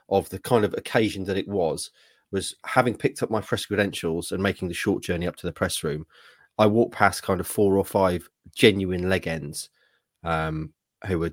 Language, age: English, 30-49